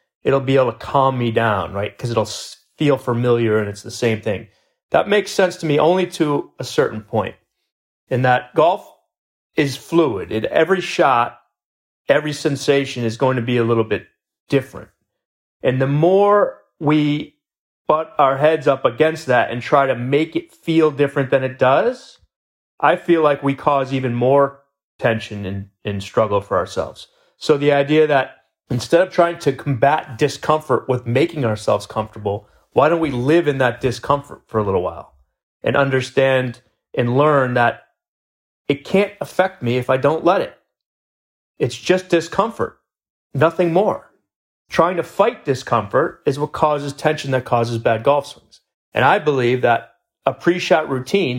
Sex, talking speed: male, 165 wpm